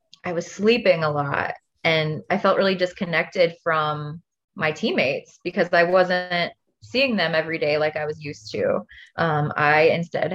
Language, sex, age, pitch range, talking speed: English, female, 20-39, 160-215 Hz, 160 wpm